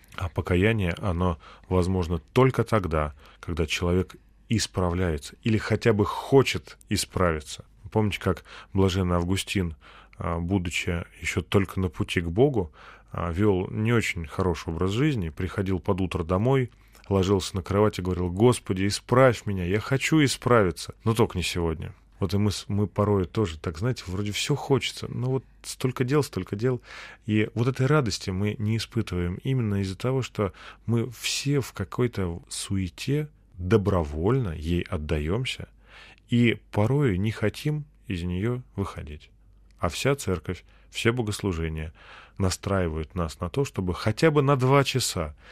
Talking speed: 140 wpm